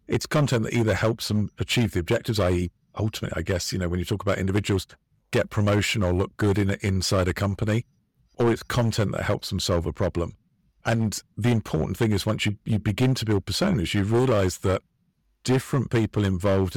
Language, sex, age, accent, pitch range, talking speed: English, male, 50-69, British, 95-115 Hz, 205 wpm